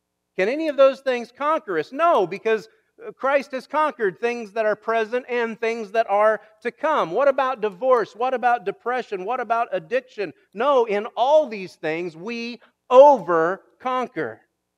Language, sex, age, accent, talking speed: English, male, 40-59, American, 155 wpm